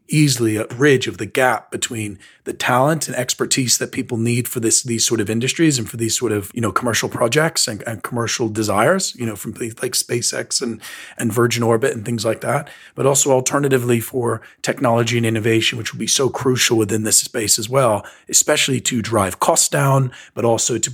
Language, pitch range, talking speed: English, 110-130 Hz, 205 wpm